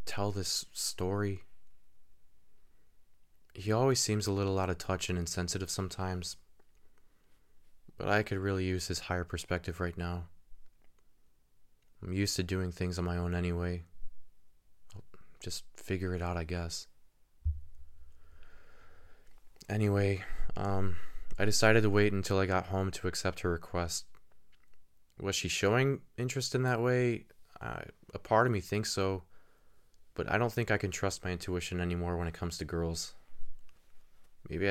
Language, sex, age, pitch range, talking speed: English, male, 20-39, 85-100 Hz, 145 wpm